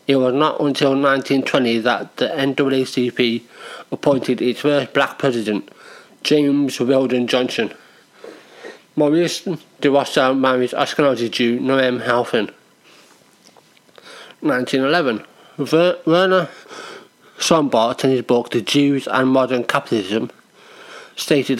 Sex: male